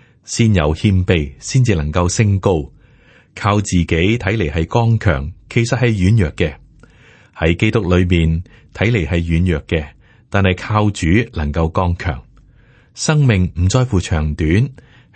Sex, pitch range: male, 85-120 Hz